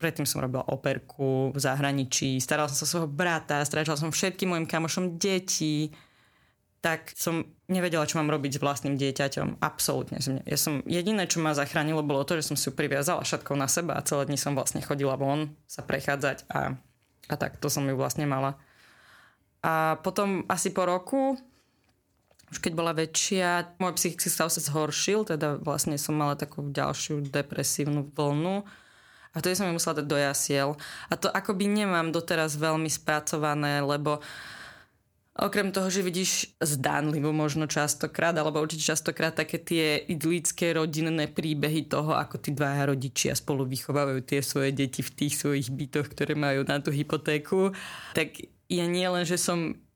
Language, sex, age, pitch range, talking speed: Slovak, female, 20-39, 140-170 Hz, 165 wpm